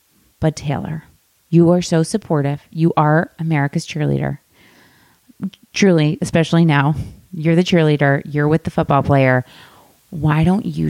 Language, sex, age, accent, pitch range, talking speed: English, female, 30-49, American, 150-200 Hz, 130 wpm